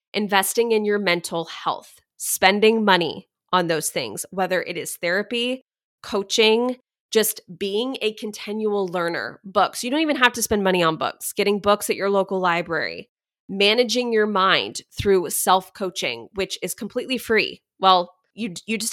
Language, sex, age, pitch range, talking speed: English, female, 20-39, 180-230 Hz, 155 wpm